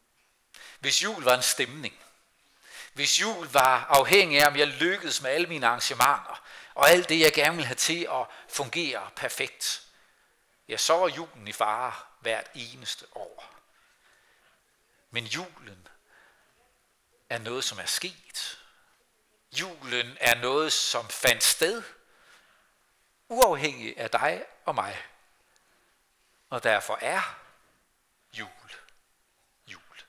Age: 60-79